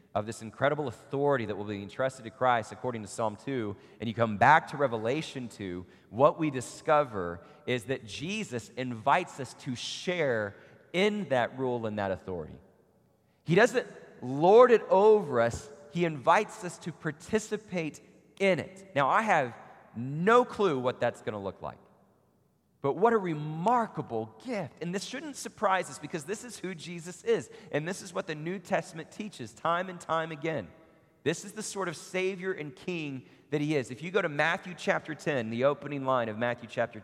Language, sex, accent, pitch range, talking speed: English, male, American, 115-175 Hz, 185 wpm